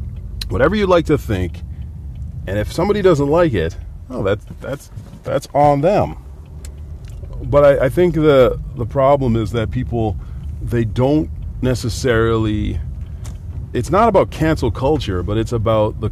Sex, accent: male, American